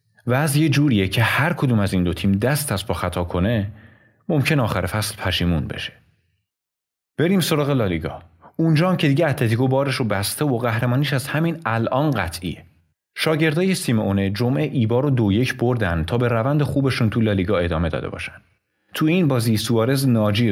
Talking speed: 170 wpm